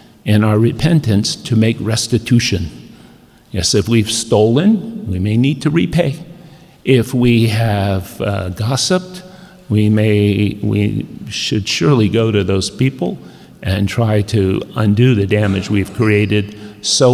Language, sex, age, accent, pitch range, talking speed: English, male, 50-69, American, 105-135 Hz, 130 wpm